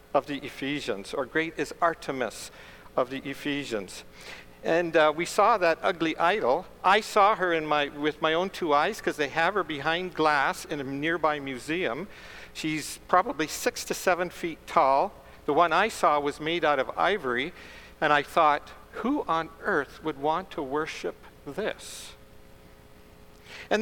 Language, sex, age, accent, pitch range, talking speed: English, male, 60-79, American, 115-175 Hz, 165 wpm